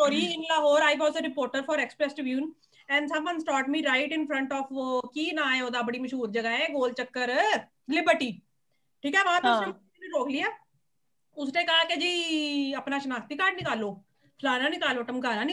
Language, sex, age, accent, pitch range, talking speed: English, female, 30-49, Indian, 245-315 Hz, 100 wpm